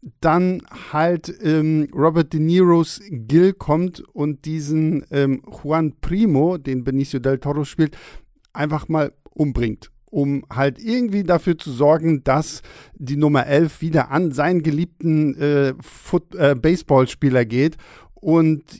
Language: German